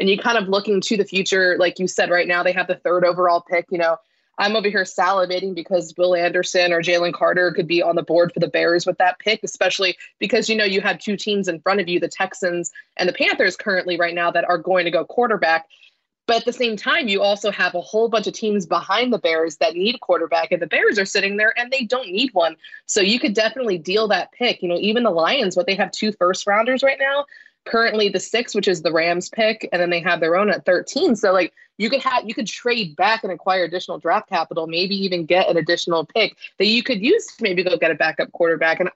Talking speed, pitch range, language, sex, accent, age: 255 wpm, 175-215 Hz, English, female, American, 20-39